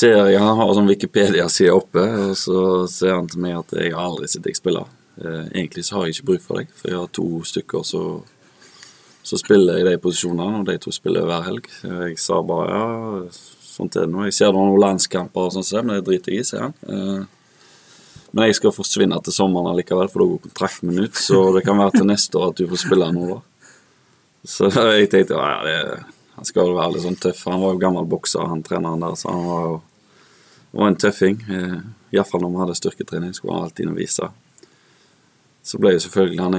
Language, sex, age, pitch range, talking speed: English, male, 20-39, 90-100 Hz, 225 wpm